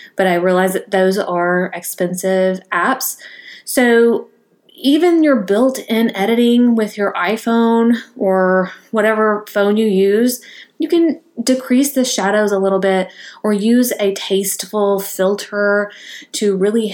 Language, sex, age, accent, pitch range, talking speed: English, female, 20-39, American, 185-230 Hz, 130 wpm